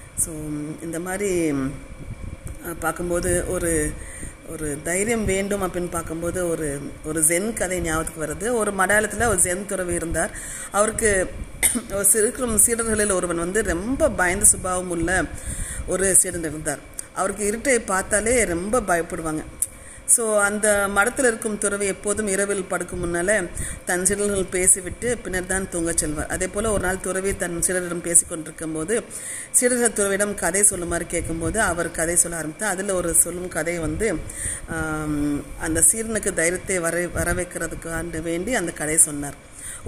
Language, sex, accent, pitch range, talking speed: Tamil, female, native, 165-205 Hz, 130 wpm